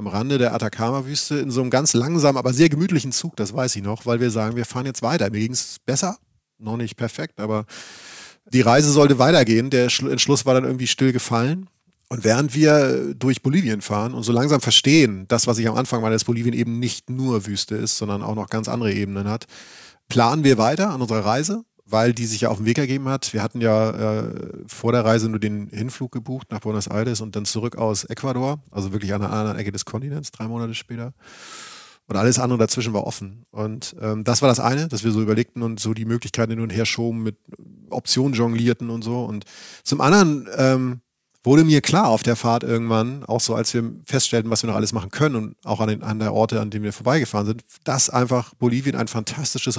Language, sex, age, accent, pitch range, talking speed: German, male, 30-49, German, 110-130 Hz, 225 wpm